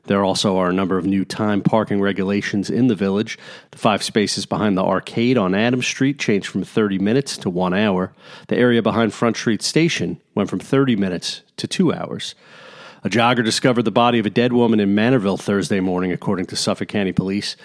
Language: English